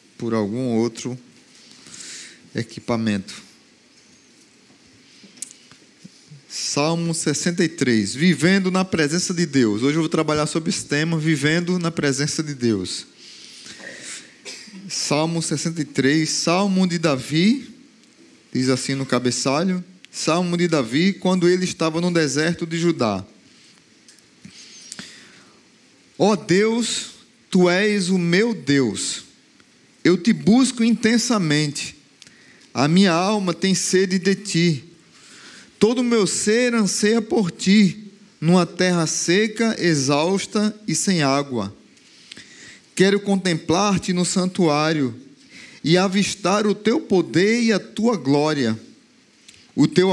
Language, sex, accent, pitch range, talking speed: Portuguese, male, Brazilian, 150-205 Hz, 105 wpm